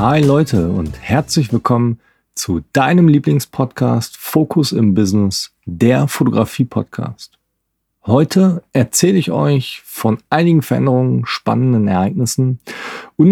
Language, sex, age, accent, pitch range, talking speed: German, male, 40-59, German, 100-135 Hz, 105 wpm